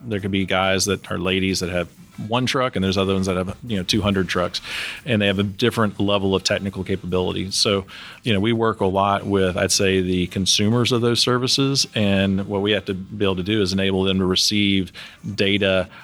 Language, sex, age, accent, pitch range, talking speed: English, male, 30-49, American, 95-105 Hz, 225 wpm